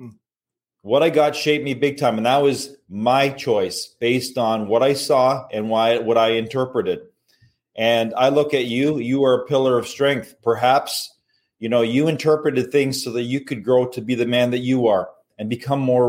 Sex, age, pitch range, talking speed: male, 30-49, 115-145 Hz, 200 wpm